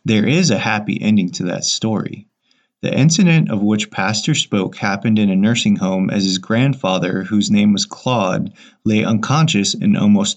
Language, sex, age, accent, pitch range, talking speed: English, male, 20-39, American, 100-150 Hz, 175 wpm